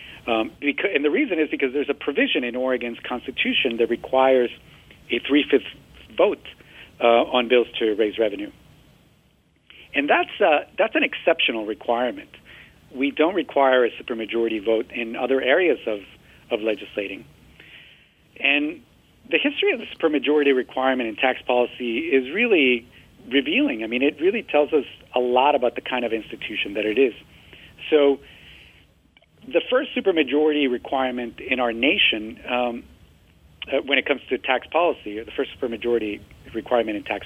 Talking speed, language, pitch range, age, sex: 150 wpm, English, 115-140 Hz, 40-59, male